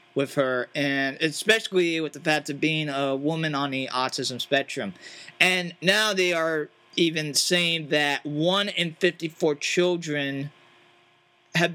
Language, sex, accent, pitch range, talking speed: English, male, American, 145-180 Hz, 145 wpm